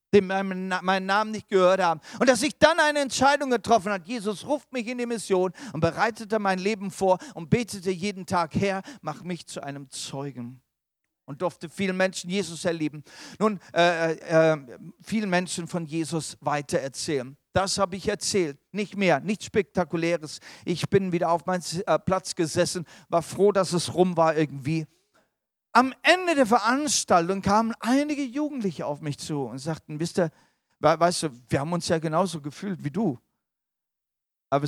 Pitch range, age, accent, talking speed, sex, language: 155-205 Hz, 40-59, German, 170 wpm, male, German